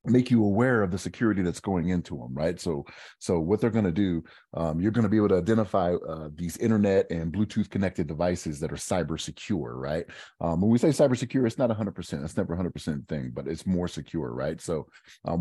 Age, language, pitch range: 30-49, English, 80-105 Hz